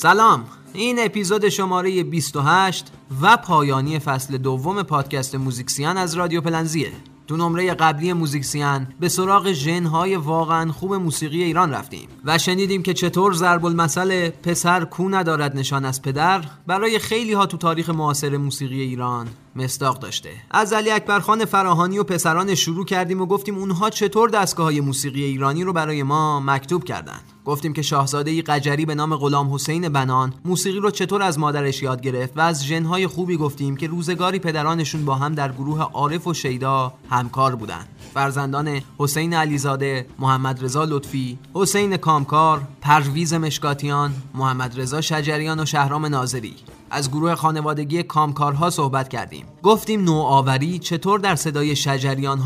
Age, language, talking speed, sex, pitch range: 30-49, Persian, 150 wpm, male, 140-175 Hz